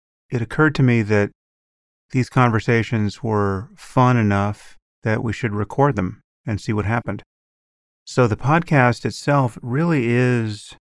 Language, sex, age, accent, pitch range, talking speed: English, male, 30-49, American, 95-120 Hz, 135 wpm